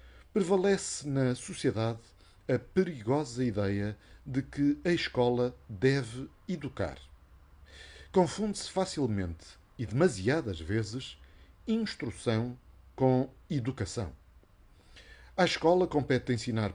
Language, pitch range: Portuguese, 95-145 Hz